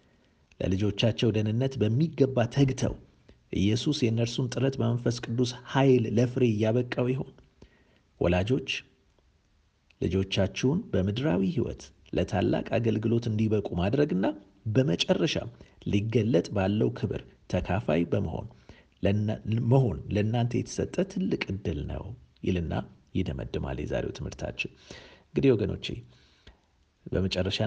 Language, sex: Amharic, male